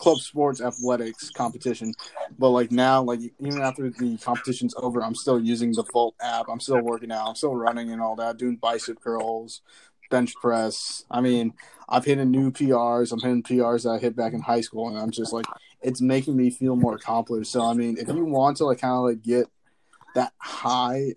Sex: male